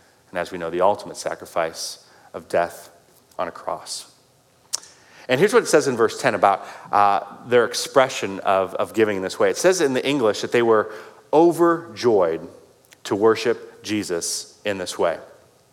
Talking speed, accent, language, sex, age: 170 wpm, American, English, male, 30-49